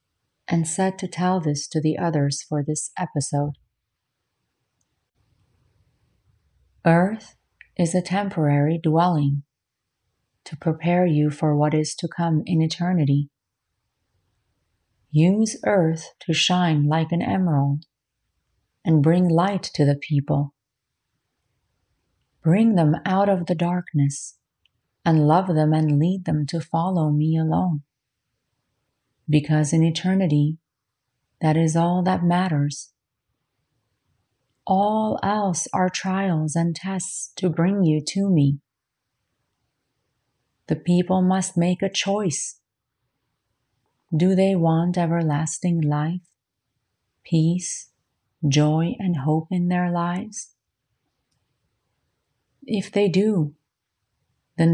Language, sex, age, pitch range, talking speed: English, female, 40-59, 130-175 Hz, 105 wpm